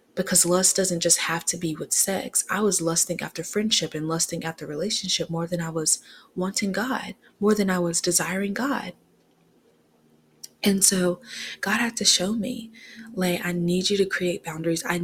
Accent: American